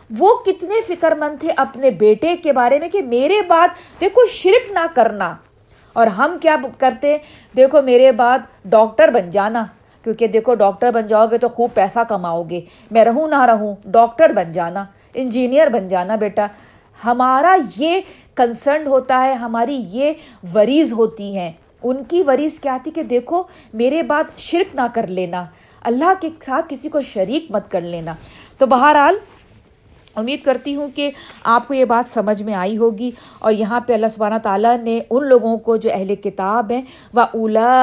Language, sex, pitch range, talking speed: Urdu, female, 210-275 Hz, 175 wpm